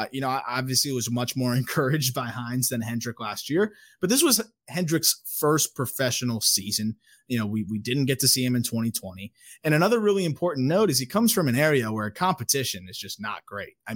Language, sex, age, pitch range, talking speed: English, male, 20-39, 115-165 Hz, 215 wpm